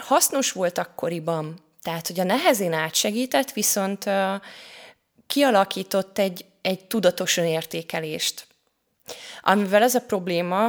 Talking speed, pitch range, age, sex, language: 100 wpm, 175-210 Hz, 20-39, female, Hungarian